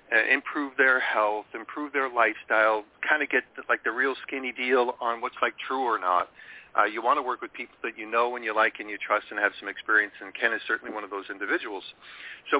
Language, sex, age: English, male, 40-59